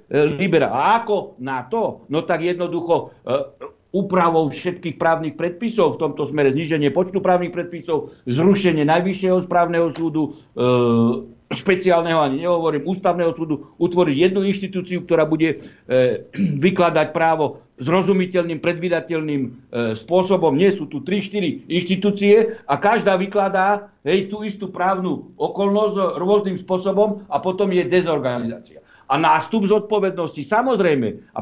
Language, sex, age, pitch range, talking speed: Slovak, male, 60-79, 160-205 Hz, 125 wpm